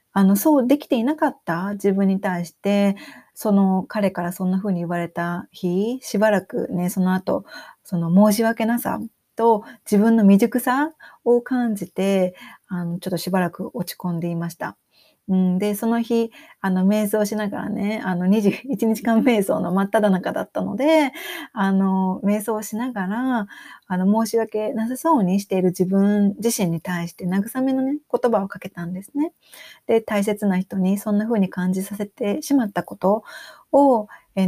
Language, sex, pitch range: Japanese, female, 195-245 Hz